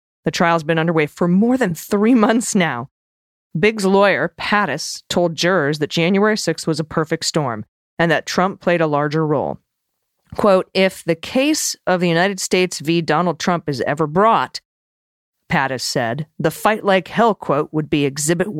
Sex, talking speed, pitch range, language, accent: female, 170 wpm, 155-195 Hz, English, American